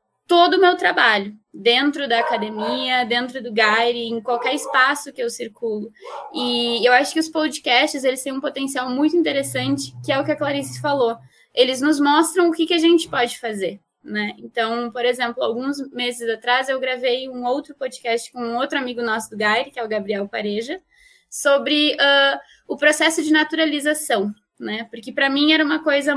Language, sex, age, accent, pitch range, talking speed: Portuguese, female, 10-29, Brazilian, 235-305 Hz, 185 wpm